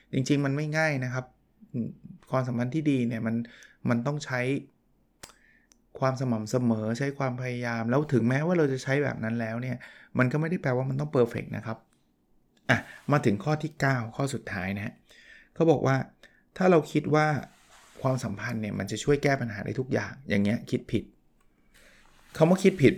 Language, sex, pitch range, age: Thai, male, 120-150 Hz, 20-39